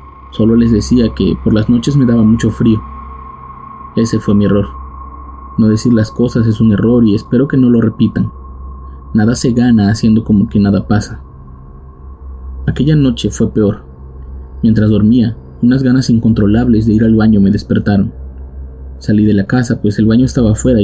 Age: 20-39